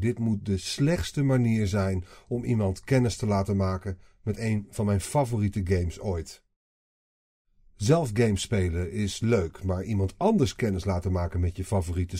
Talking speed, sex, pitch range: 160 wpm, male, 100-140 Hz